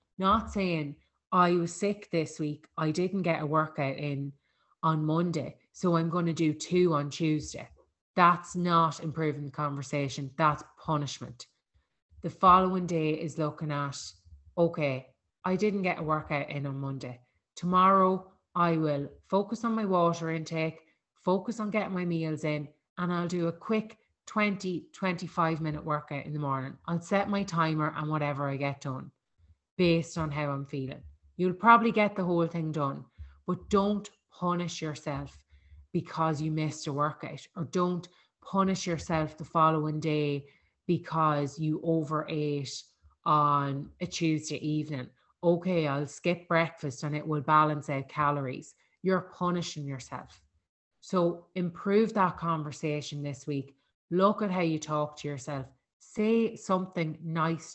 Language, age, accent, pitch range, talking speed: English, 30-49, Irish, 145-175 Hz, 150 wpm